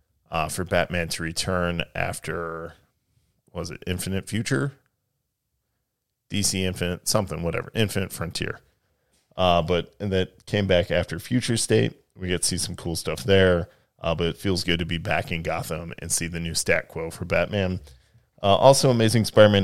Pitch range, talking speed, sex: 85-110 Hz, 170 wpm, male